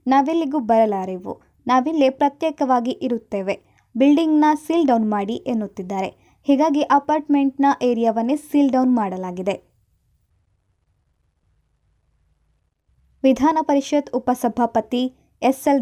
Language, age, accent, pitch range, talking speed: Kannada, 20-39, native, 215-265 Hz, 65 wpm